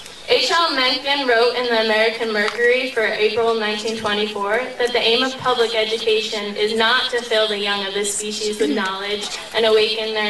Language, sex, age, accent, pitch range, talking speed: English, female, 10-29, American, 220-270 Hz, 175 wpm